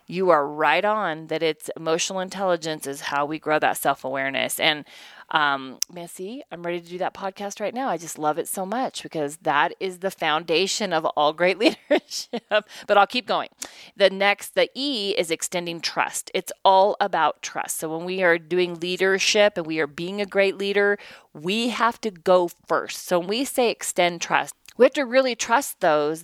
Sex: female